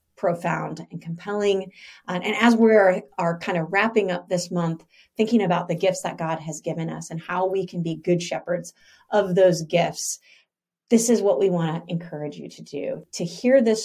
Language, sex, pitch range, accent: English, female, 170-210 Hz, American